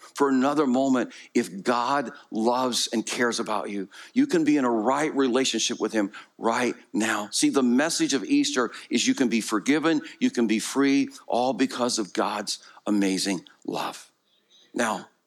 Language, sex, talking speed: English, male, 165 wpm